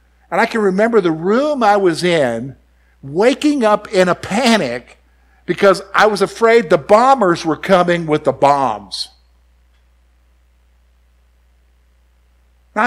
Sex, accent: male, American